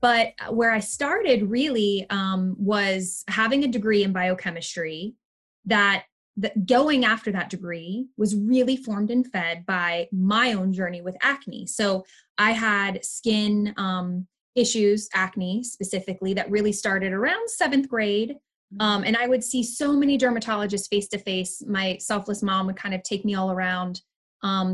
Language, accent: English, American